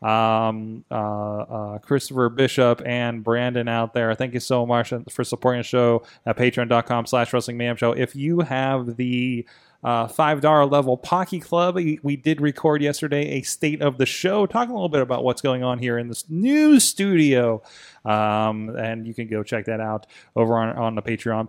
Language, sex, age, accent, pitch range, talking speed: English, male, 30-49, American, 120-155 Hz, 190 wpm